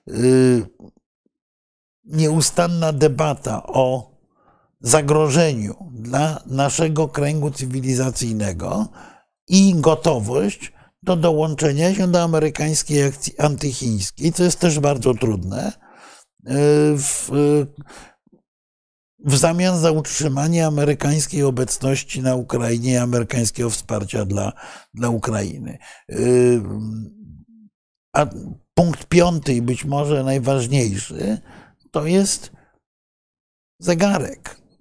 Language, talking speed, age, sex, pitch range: Polish, 80 wpm, 60-79, male, 120-155 Hz